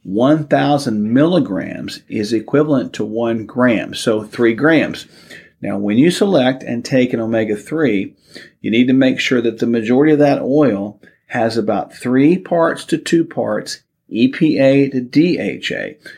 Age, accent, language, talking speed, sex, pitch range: 50-69, American, English, 145 wpm, male, 110-150 Hz